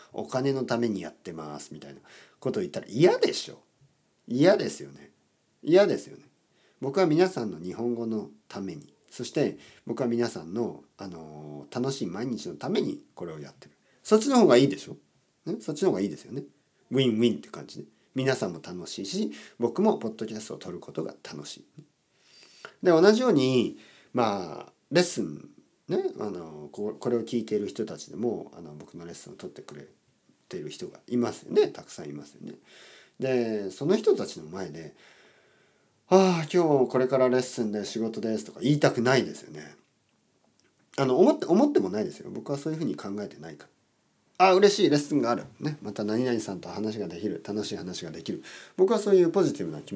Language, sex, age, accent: Japanese, male, 50-69, native